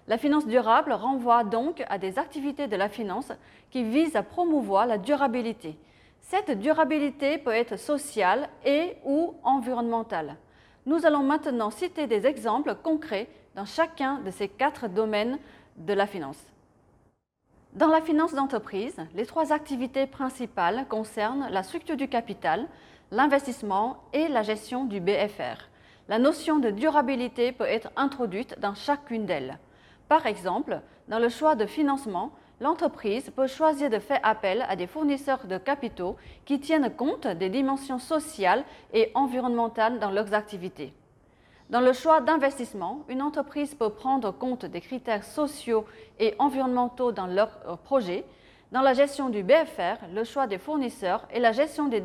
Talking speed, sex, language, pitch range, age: 150 wpm, female, French, 210-285 Hz, 30-49